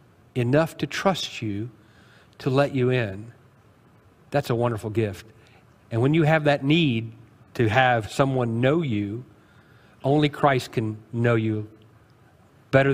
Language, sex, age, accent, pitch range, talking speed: English, male, 40-59, American, 115-140 Hz, 135 wpm